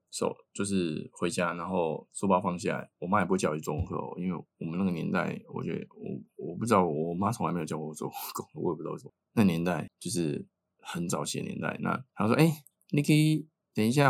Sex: male